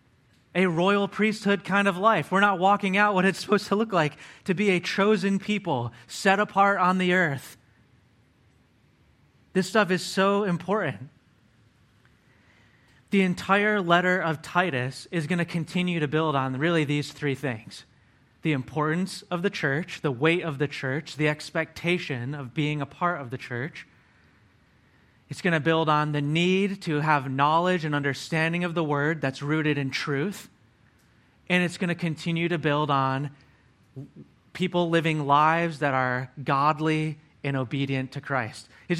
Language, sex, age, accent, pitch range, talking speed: English, male, 30-49, American, 140-180 Hz, 160 wpm